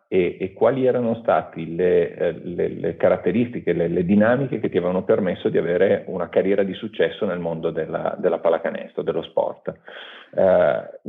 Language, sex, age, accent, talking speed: Italian, male, 40-59, native, 160 wpm